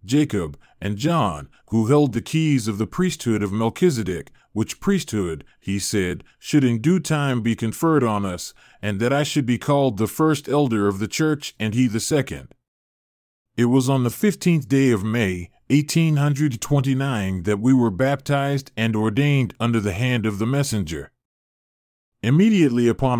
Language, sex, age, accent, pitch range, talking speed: English, male, 30-49, American, 105-145 Hz, 165 wpm